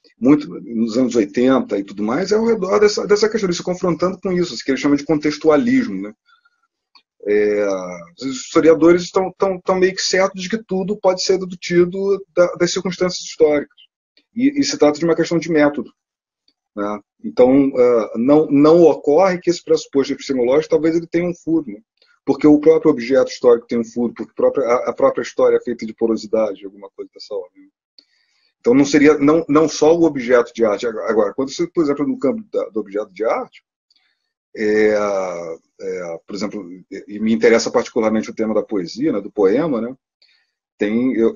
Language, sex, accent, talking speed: Portuguese, male, Brazilian, 175 wpm